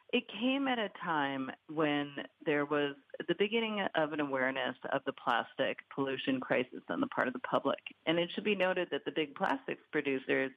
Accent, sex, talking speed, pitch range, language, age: American, female, 195 wpm, 140-180 Hz, English, 50-69